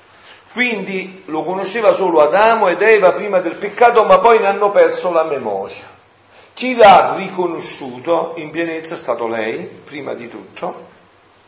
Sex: male